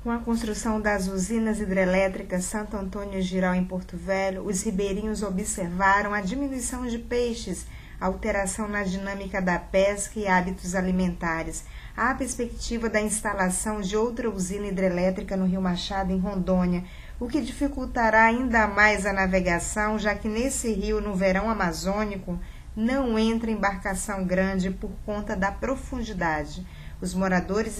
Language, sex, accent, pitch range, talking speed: Portuguese, female, Brazilian, 190-225 Hz, 140 wpm